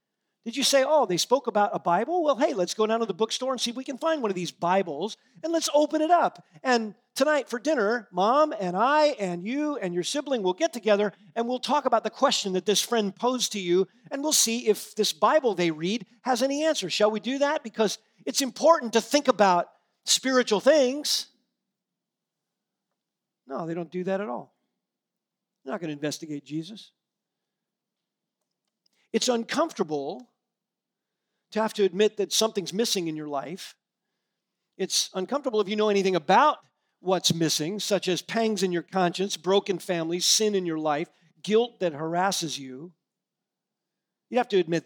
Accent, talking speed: American, 180 wpm